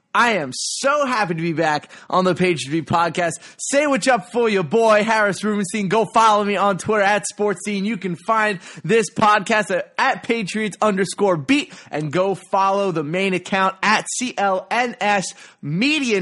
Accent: American